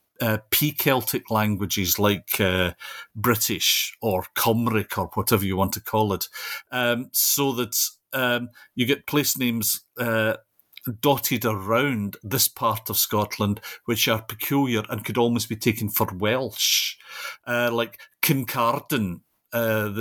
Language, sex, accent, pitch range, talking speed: English, male, British, 105-125 Hz, 135 wpm